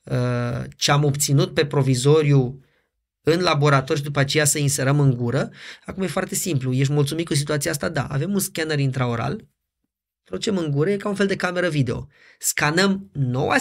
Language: Romanian